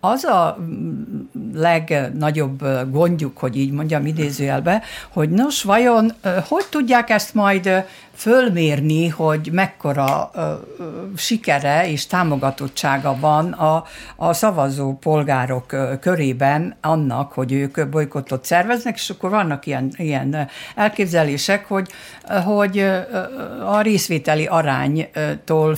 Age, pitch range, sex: 60-79, 140-195 Hz, female